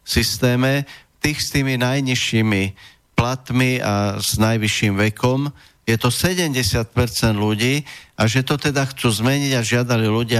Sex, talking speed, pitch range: male, 135 wpm, 105-125 Hz